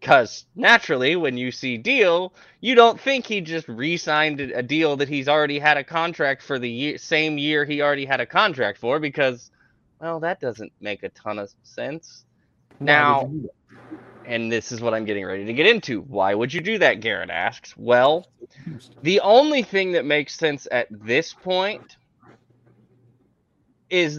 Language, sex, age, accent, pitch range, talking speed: English, male, 20-39, American, 130-185 Hz, 170 wpm